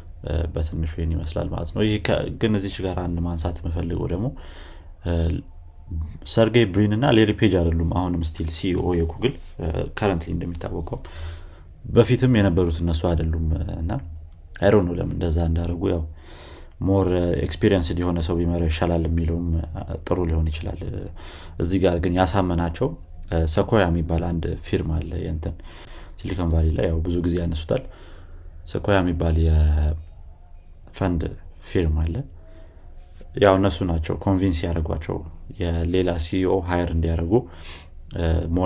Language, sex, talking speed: Amharic, male, 90 wpm